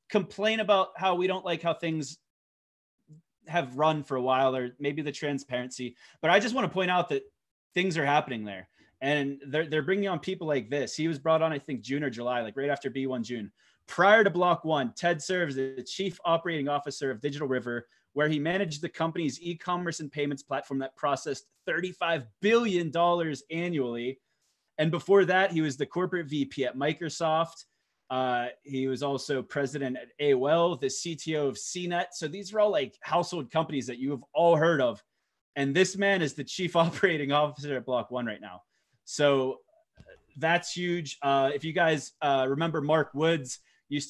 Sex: male